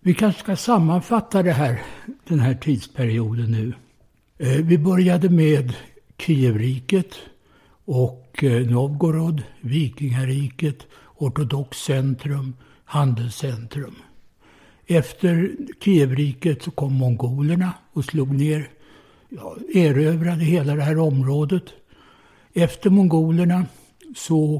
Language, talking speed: English, 85 wpm